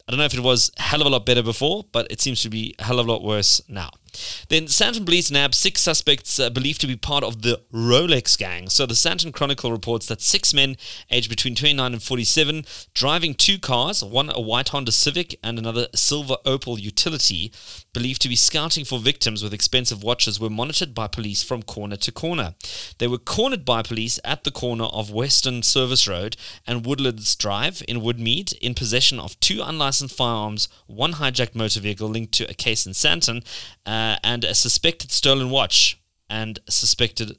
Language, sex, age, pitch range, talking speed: English, male, 20-39, 110-140 Hz, 200 wpm